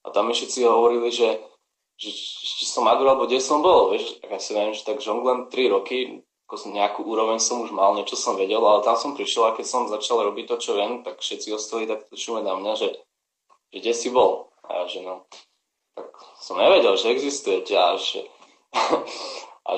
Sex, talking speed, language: male, 210 wpm, Slovak